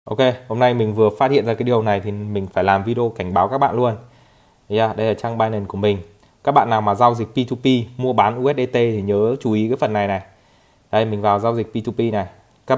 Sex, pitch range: male, 105-130 Hz